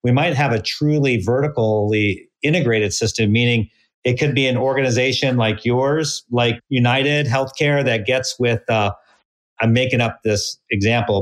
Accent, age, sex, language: American, 40-59, male, English